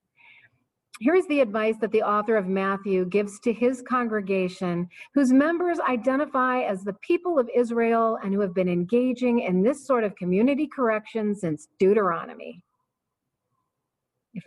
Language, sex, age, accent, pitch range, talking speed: English, female, 40-59, American, 190-255 Hz, 145 wpm